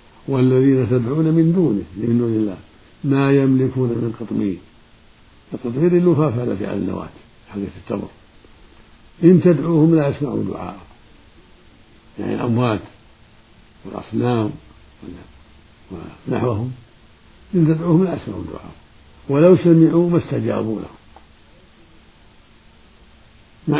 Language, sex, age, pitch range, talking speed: Arabic, male, 60-79, 105-155 Hz, 95 wpm